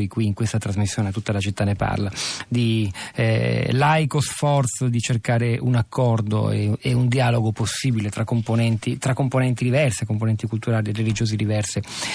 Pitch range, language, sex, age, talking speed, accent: 110-125 Hz, Italian, male, 40-59, 160 wpm, native